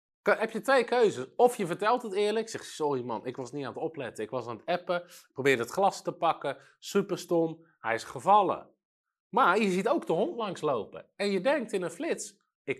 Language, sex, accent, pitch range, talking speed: Dutch, male, Dutch, 165-230 Hz, 220 wpm